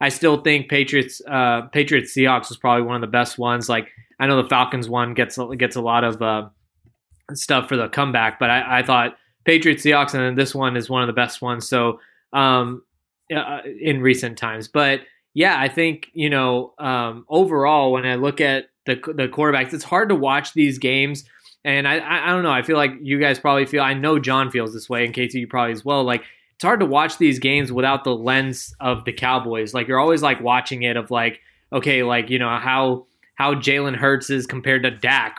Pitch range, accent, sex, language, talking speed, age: 125-145 Hz, American, male, English, 220 wpm, 20-39